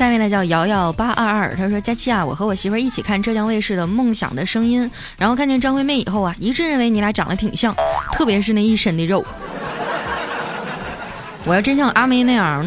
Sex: female